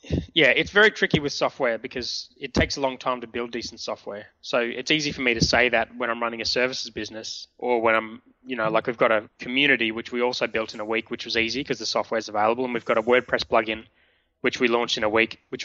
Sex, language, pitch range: male, English, 110-125 Hz